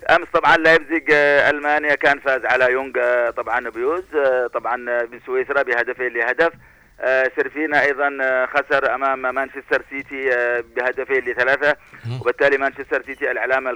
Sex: male